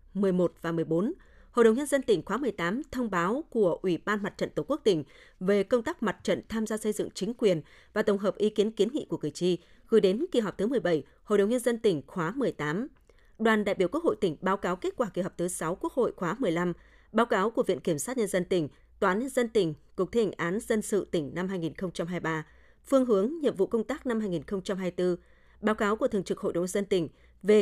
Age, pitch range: 20-39, 180-230 Hz